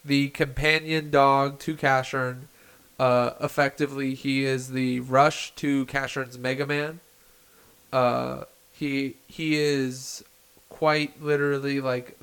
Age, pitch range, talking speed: 20-39, 125-145 Hz, 110 wpm